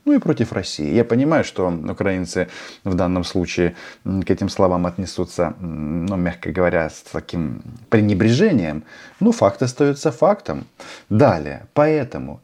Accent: native